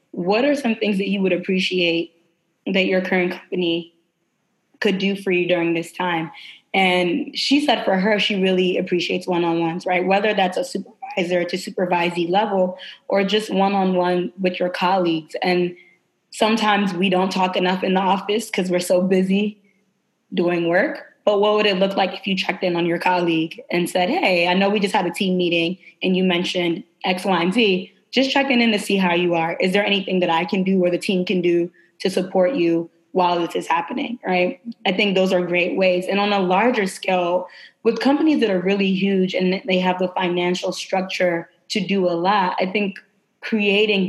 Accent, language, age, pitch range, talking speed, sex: American, English, 20-39, 180-200 Hz, 200 wpm, female